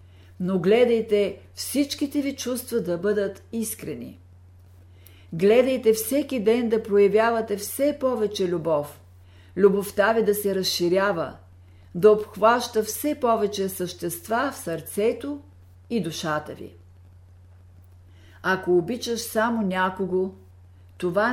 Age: 50-69